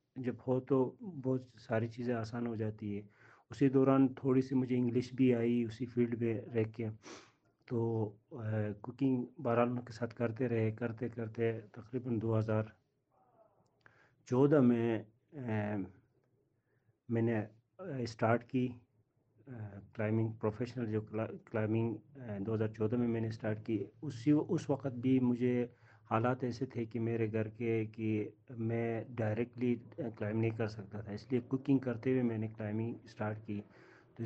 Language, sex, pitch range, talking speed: Urdu, male, 110-125 Hz, 145 wpm